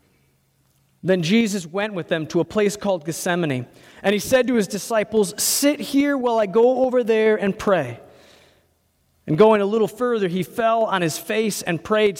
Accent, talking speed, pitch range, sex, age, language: American, 180 wpm, 135-195 Hz, male, 40-59, English